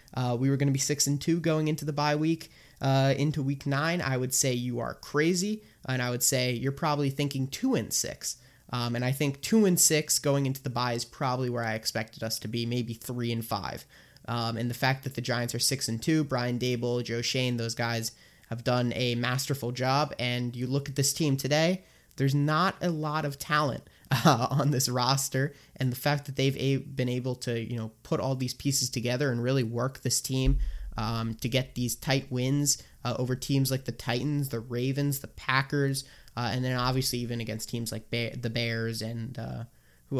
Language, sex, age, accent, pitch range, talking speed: English, male, 20-39, American, 120-140 Hz, 220 wpm